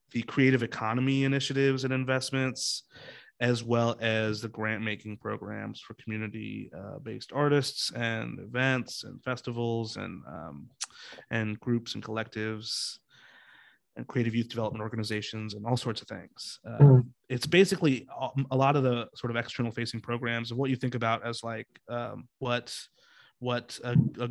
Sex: male